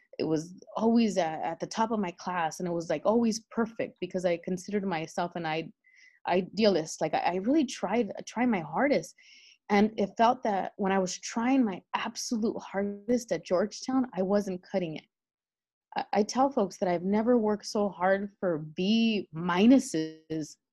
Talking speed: 165 wpm